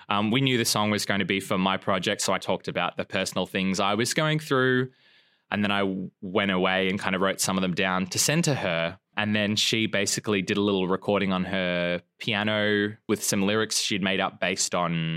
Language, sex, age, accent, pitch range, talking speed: English, male, 20-39, Australian, 95-125 Hz, 235 wpm